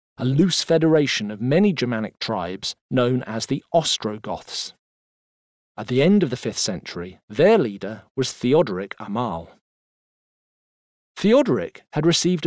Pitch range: 110-170 Hz